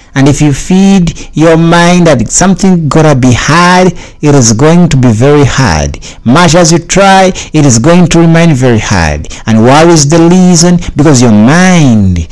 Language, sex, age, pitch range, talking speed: English, male, 60-79, 125-165 Hz, 185 wpm